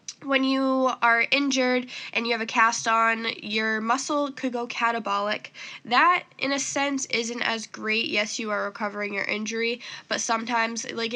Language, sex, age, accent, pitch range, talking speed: English, female, 10-29, American, 215-255 Hz, 165 wpm